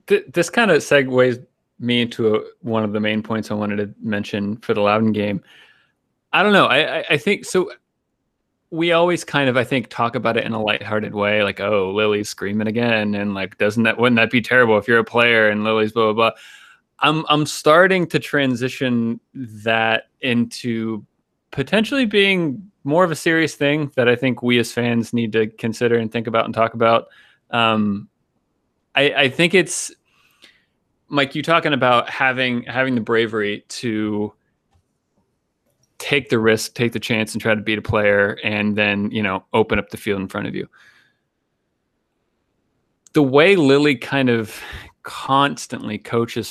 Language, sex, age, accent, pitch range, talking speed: English, male, 30-49, American, 110-140 Hz, 180 wpm